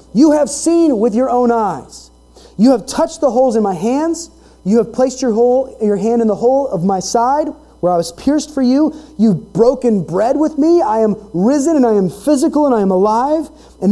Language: English